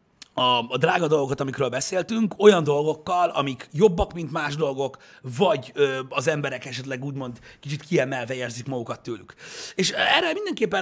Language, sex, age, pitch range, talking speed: Hungarian, male, 30-49, 135-190 Hz, 150 wpm